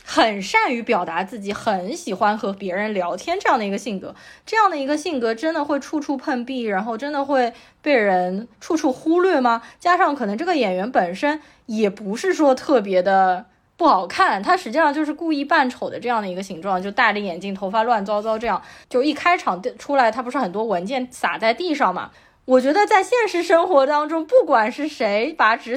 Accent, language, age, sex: native, Chinese, 20-39, female